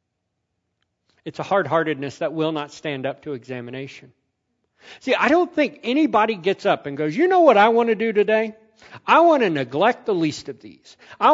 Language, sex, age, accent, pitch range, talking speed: English, male, 50-69, American, 150-240 Hz, 190 wpm